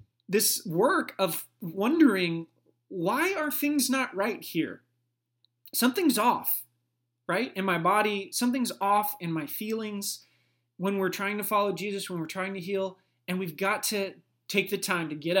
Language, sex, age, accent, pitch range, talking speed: English, male, 20-39, American, 125-180 Hz, 160 wpm